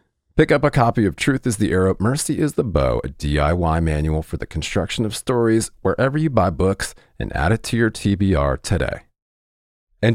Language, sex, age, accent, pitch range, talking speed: English, male, 40-59, American, 80-110 Hz, 195 wpm